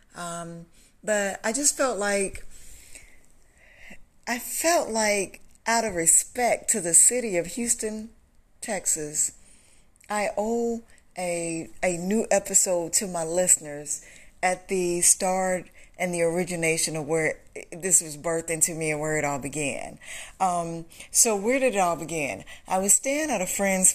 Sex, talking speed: female, 150 wpm